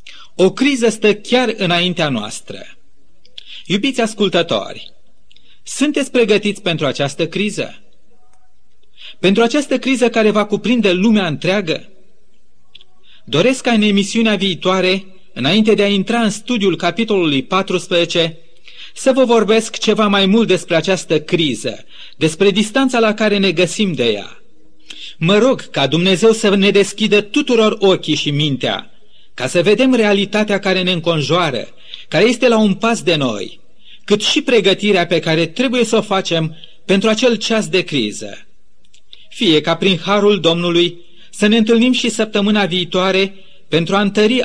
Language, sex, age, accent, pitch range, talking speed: Romanian, male, 30-49, native, 175-220 Hz, 140 wpm